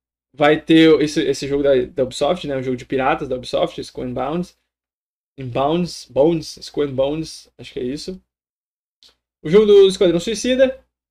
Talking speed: 160 wpm